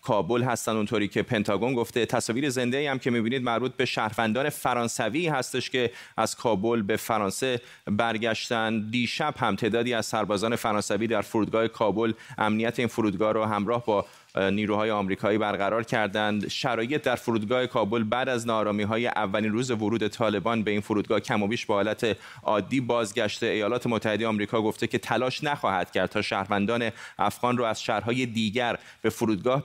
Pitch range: 105-120 Hz